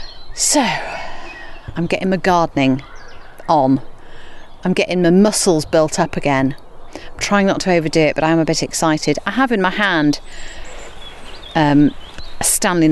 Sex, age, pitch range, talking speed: female, 40-59, 160-205 Hz, 155 wpm